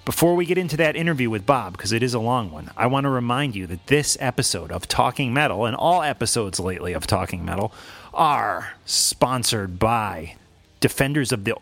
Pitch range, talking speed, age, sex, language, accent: 95-125 Hz, 195 wpm, 30-49, male, English, American